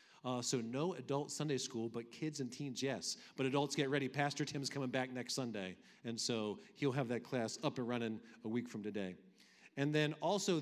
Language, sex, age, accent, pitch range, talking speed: English, male, 40-59, American, 110-140 Hz, 210 wpm